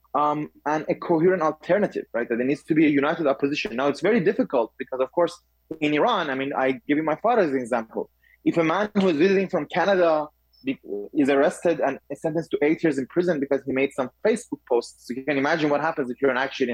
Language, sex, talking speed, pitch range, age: English, male, 220 wpm, 135-170 Hz, 20-39